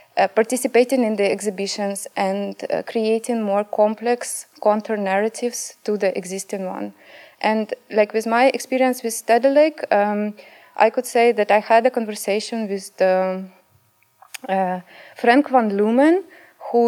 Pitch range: 195-225 Hz